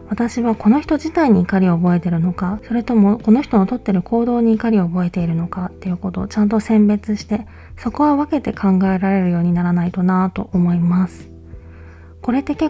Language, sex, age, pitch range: Japanese, female, 20-39, 180-230 Hz